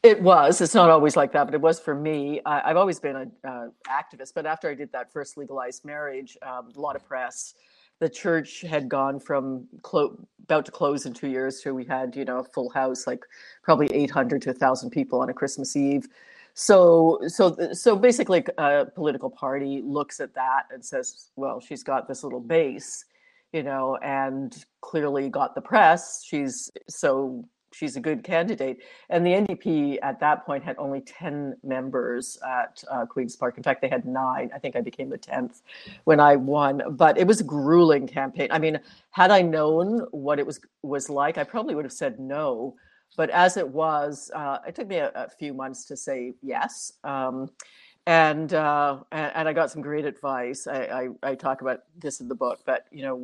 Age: 50-69